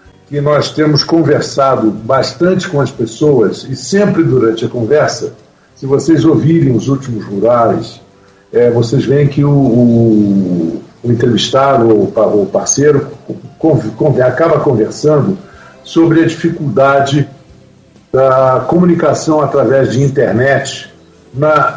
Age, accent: 60-79, Brazilian